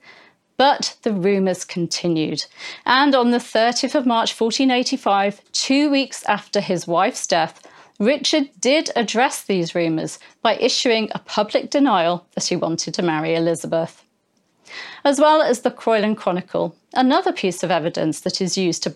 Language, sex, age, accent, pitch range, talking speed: English, female, 40-59, British, 185-255 Hz, 150 wpm